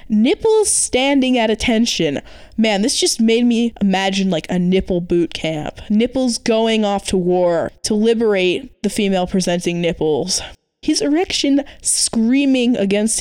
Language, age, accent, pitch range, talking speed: English, 10-29, American, 195-260 Hz, 135 wpm